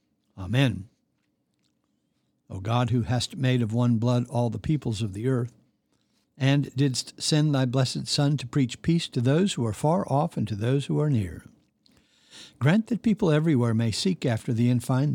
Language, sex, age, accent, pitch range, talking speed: English, male, 60-79, American, 115-150 Hz, 180 wpm